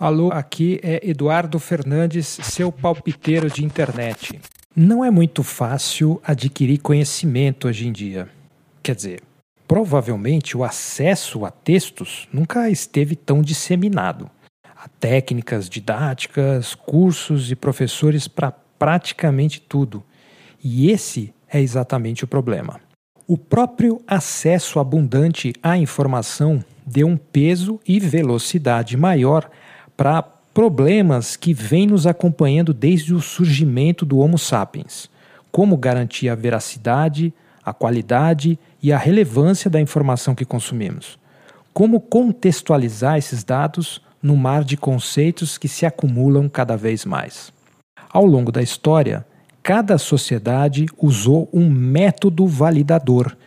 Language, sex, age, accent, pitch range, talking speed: Portuguese, male, 50-69, Brazilian, 130-170 Hz, 120 wpm